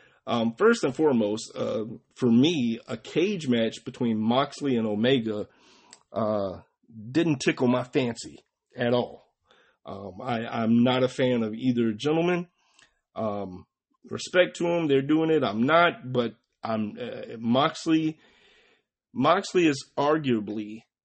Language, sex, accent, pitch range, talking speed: English, male, American, 115-145 Hz, 130 wpm